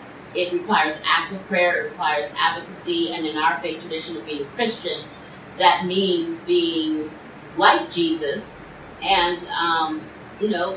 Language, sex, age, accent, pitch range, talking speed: English, female, 30-49, American, 165-200 Hz, 140 wpm